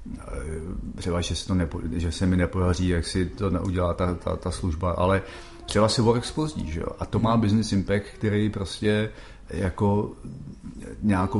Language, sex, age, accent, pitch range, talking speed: Czech, male, 40-59, native, 90-110 Hz, 175 wpm